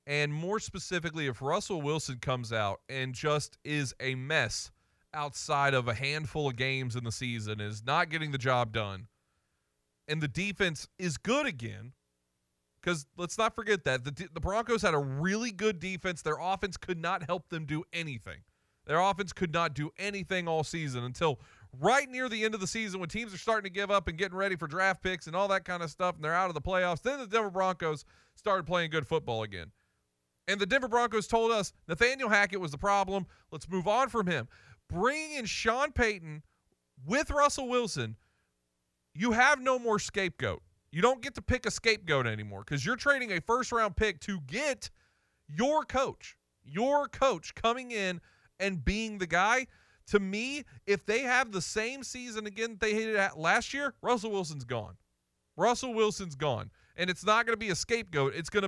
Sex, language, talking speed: male, English, 195 wpm